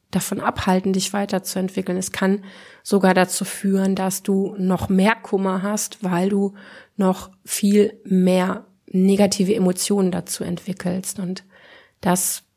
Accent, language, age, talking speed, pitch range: German, German, 30-49, 125 wpm, 185-220 Hz